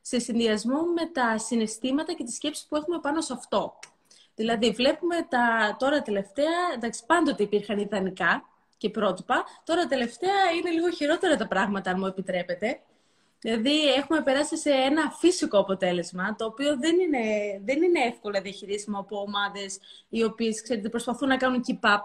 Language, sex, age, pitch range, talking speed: Greek, female, 20-39, 210-295 Hz, 160 wpm